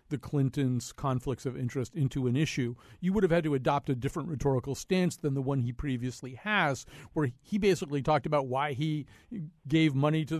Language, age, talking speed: English, 50-69, 195 wpm